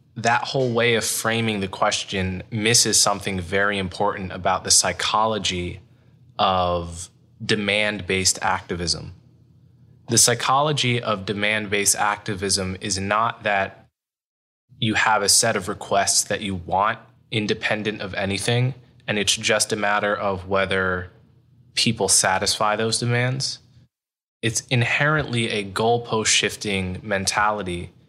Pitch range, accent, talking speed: 95-120 Hz, American, 115 wpm